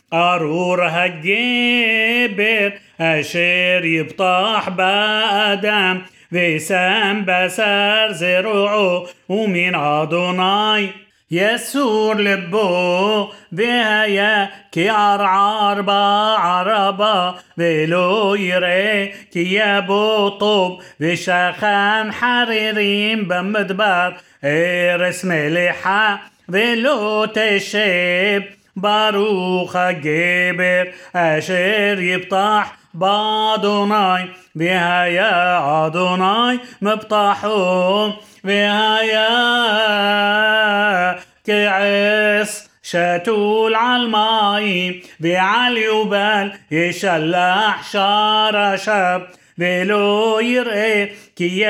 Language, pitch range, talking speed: Hebrew, 180-210 Hz, 55 wpm